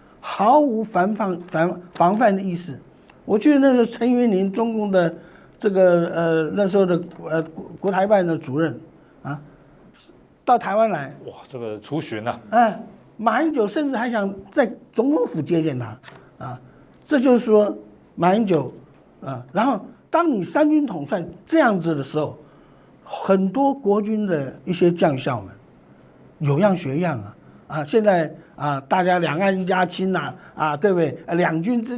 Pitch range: 145-220 Hz